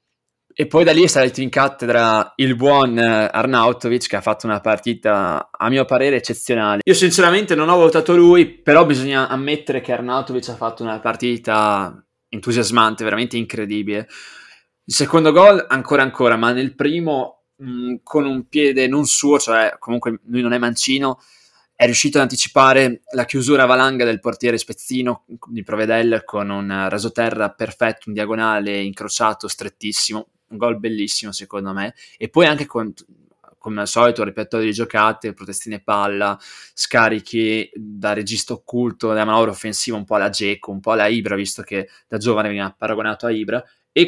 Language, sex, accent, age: Italian, male, native, 20-39